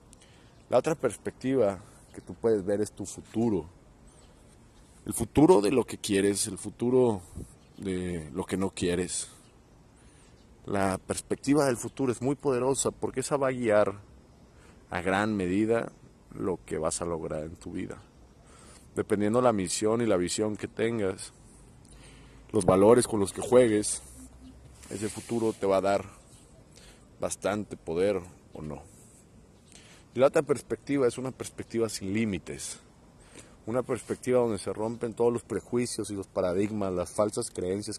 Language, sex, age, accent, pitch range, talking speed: Spanish, male, 40-59, Mexican, 95-115 Hz, 145 wpm